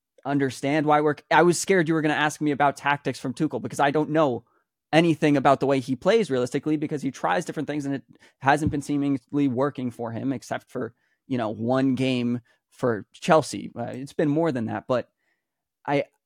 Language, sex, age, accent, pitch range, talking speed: English, male, 20-39, American, 130-155 Hz, 205 wpm